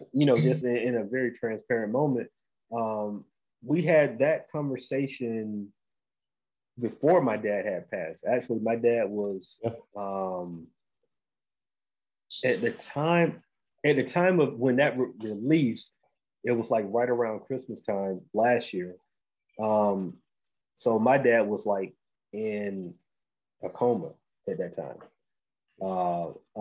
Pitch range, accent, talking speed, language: 105-125 Hz, American, 125 wpm, English